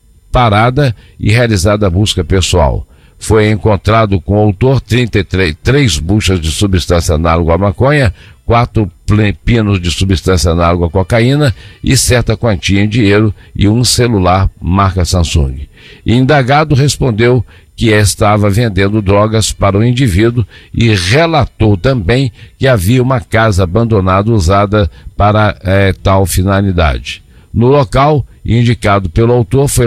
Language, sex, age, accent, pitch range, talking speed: Portuguese, male, 60-79, Brazilian, 95-120 Hz, 130 wpm